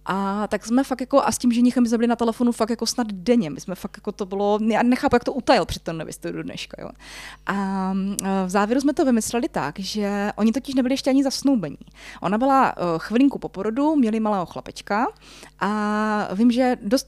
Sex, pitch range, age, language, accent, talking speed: female, 190-245 Hz, 20-39, Czech, native, 205 wpm